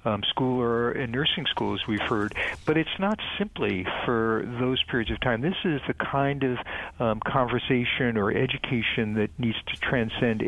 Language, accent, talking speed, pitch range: English, American, 170 wpm, 110-135 Hz